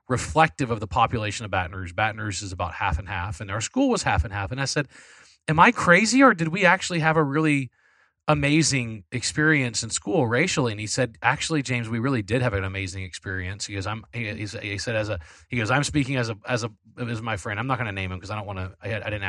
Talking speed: 260 wpm